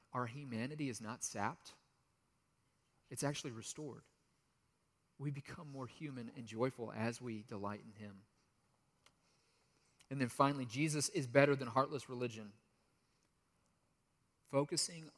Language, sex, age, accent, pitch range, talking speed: English, male, 40-59, American, 115-140 Hz, 115 wpm